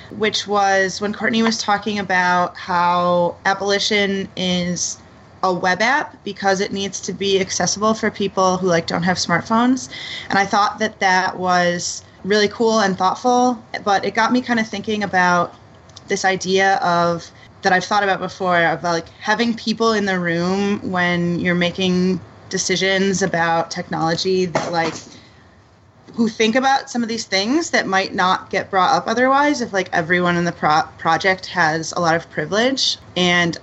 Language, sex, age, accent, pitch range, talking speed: English, female, 30-49, American, 170-200 Hz, 165 wpm